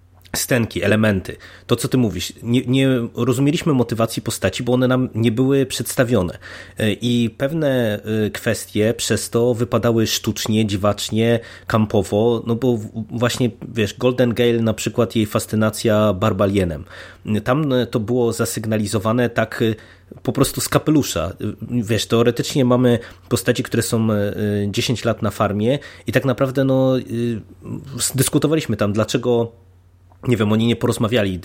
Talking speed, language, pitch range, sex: 130 wpm, Polish, 100-125 Hz, male